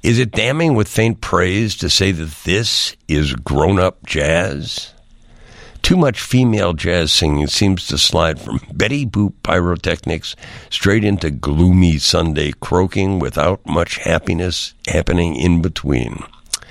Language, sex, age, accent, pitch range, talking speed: English, male, 60-79, American, 80-100 Hz, 130 wpm